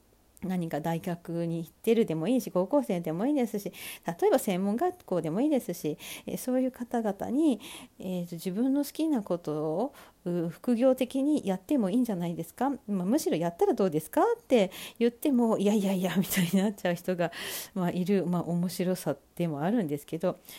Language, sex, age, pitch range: Japanese, female, 40-59, 175-265 Hz